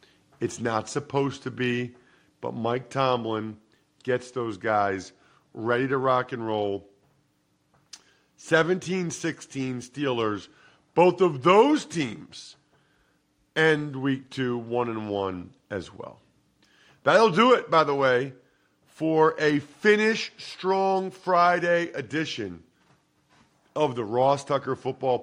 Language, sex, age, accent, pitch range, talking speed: English, male, 50-69, American, 120-170 Hz, 110 wpm